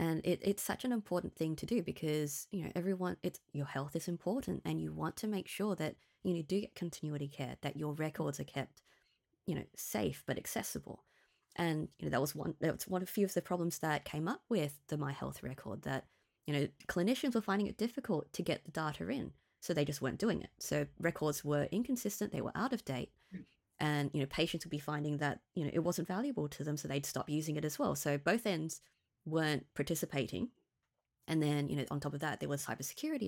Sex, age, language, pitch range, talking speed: female, 20-39, English, 145-195 Hz, 235 wpm